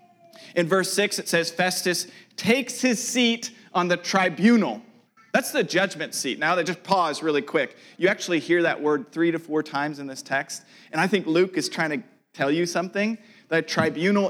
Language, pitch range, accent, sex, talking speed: English, 155-225 Hz, American, male, 195 wpm